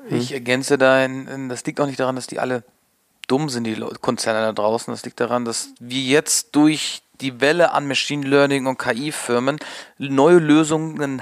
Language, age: German, 40-59